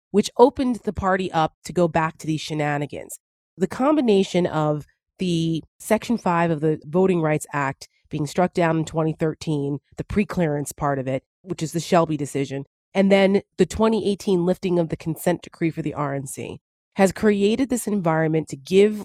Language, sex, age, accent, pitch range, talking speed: English, female, 30-49, American, 155-195 Hz, 175 wpm